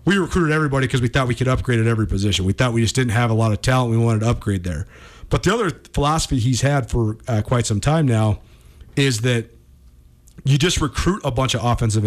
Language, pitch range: English, 115-155 Hz